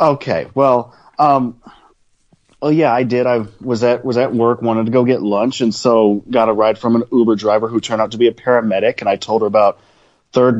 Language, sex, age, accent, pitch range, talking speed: English, male, 30-49, American, 110-130 Hz, 230 wpm